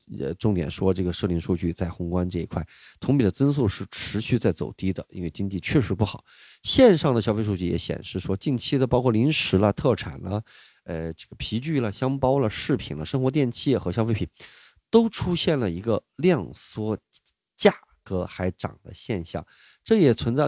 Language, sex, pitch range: Chinese, male, 90-120 Hz